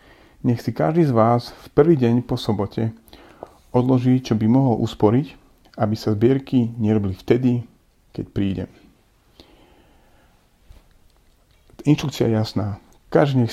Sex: male